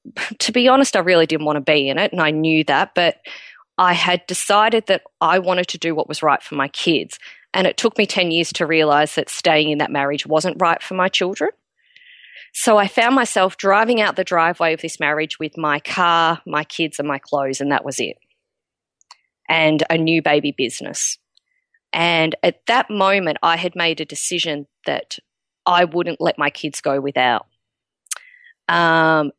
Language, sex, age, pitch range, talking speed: English, female, 20-39, 155-195 Hz, 190 wpm